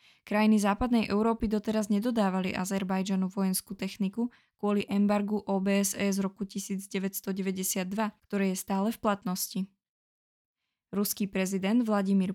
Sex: female